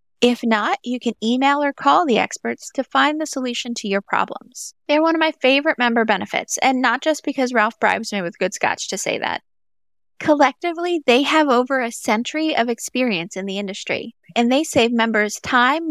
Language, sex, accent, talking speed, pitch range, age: English, female, American, 195 wpm, 215-280 Hz, 30-49